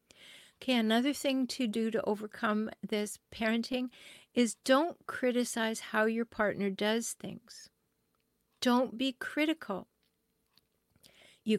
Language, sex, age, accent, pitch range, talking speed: English, female, 60-79, American, 210-260 Hz, 110 wpm